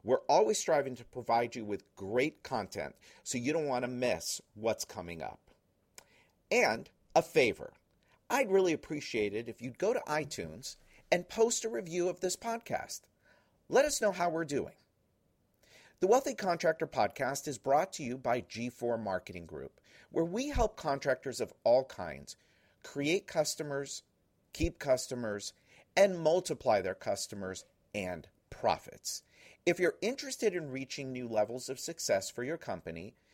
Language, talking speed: English, 150 wpm